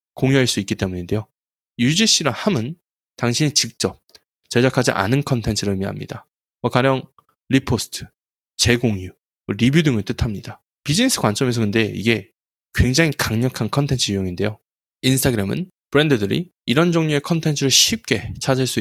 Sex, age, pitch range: male, 20-39, 105-145 Hz